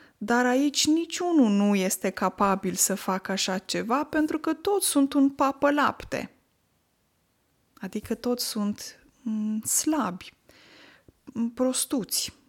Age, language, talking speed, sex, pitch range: 20-39, Romanian, 105 wpm, female, 190-275 Hz